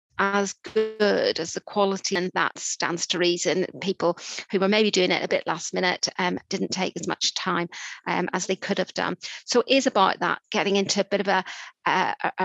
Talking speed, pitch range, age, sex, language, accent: 205 wpm, 185-210 Hz, 40-59, female, English, British